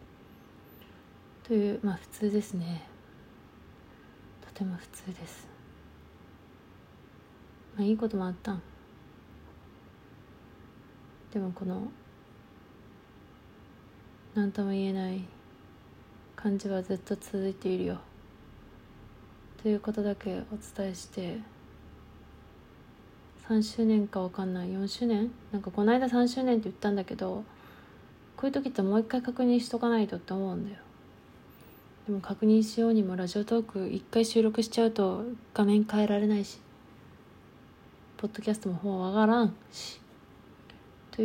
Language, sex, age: Japanese, female, 20-39